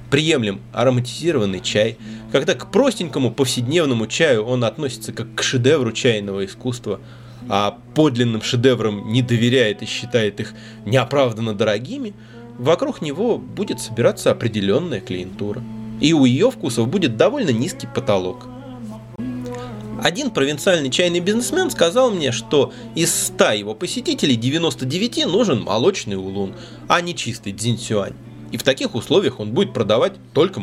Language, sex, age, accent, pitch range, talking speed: Russian, male, 20-39, native, 110-155 Hz, 130 wpm